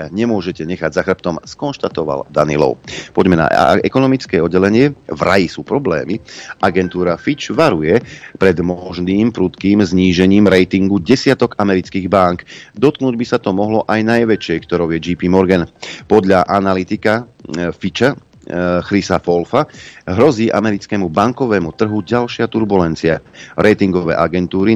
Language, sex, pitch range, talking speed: Slovak, male, 90-110 Hz, 120 wpm